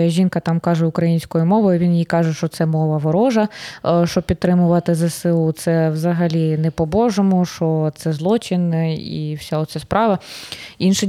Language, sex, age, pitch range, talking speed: Ukrainian, female, 20-39, 160-185 Hz, 150 wpm